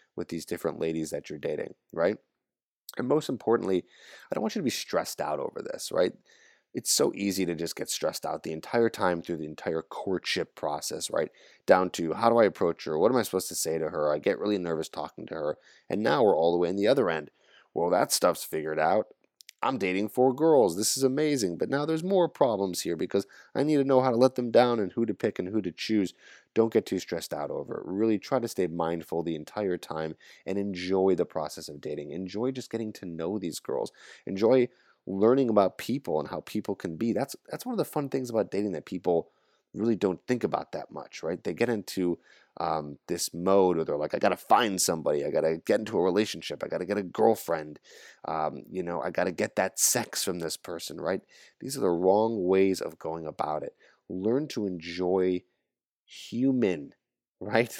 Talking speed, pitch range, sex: 225 wpm, 85-115 Hz, male